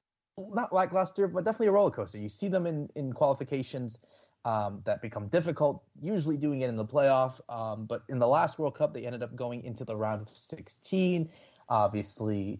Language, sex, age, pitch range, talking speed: English, male, 20-39, 105-140 Hz, 200 wpm